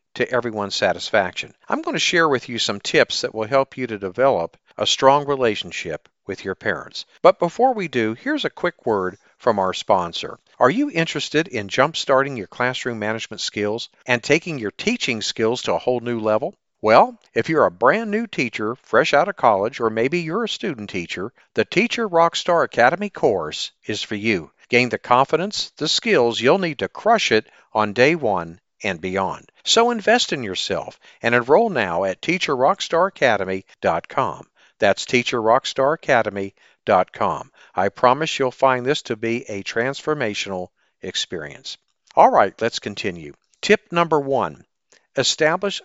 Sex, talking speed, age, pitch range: male, 160 wpm, 50-69, 110-170 Hz